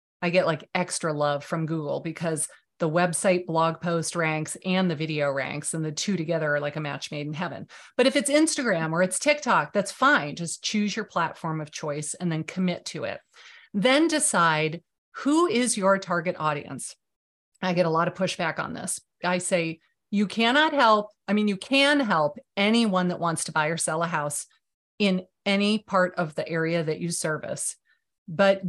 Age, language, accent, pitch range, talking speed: 30-49, English, American, 165-205 Hz, 190 wpm